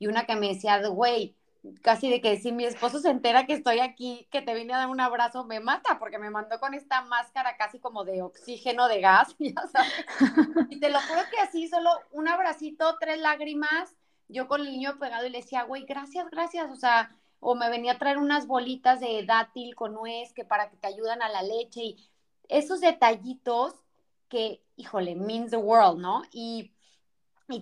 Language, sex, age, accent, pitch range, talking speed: Spanish, female, 30-49, Mexican, 210-265 Hz, 205 wpm